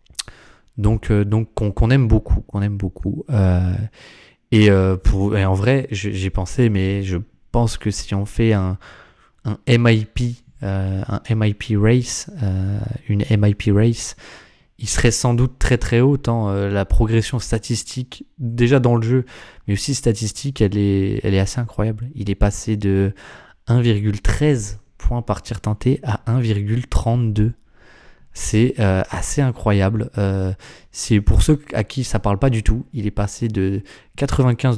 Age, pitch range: 20-39, 100-120 Hz